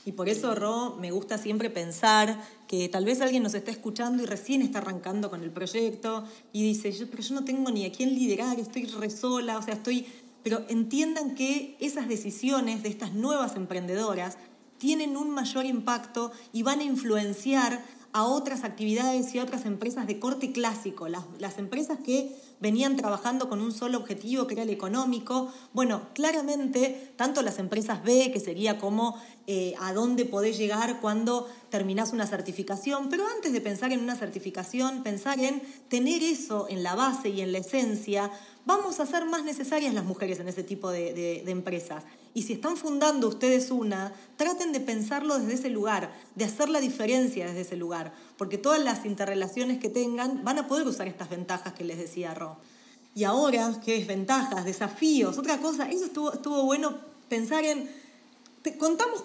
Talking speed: 180 wpm